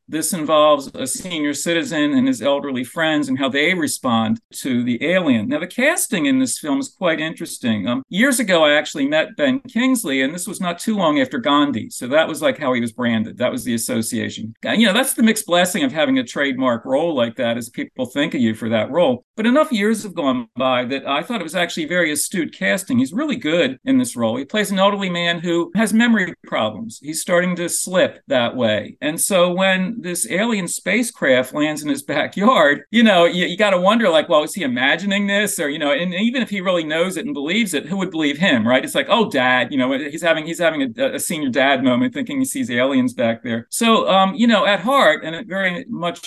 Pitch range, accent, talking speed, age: 155-255 Hz, American, 235 wpm, 50-69